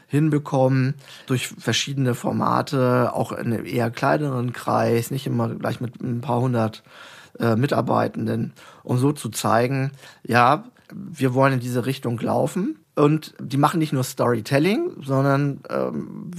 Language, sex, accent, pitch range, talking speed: German, male, German, 120-145 Hz, 140 wpm